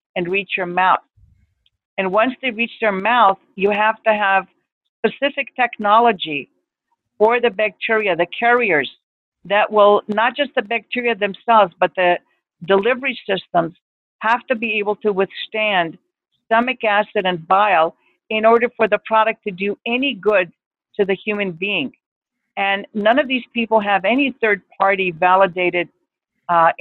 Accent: American